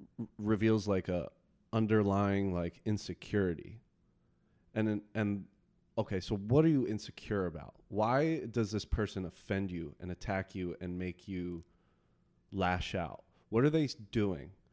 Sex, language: male, English